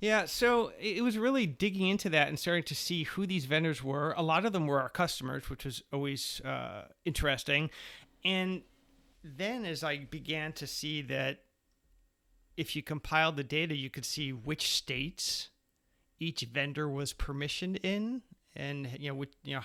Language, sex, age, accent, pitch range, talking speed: English, male, 40-59, American, 140-170 Hz, 175 wpm